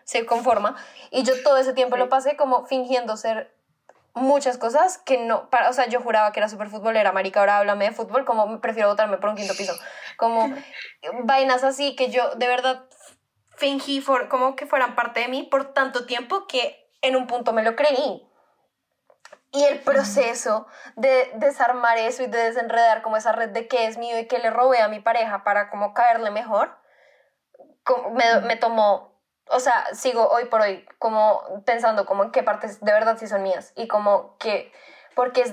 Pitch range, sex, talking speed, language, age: 220-270 Hz, female, 195 wpm, Spanish, 10-29